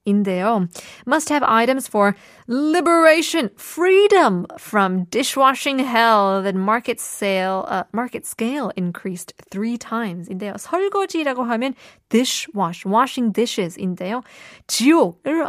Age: 20-39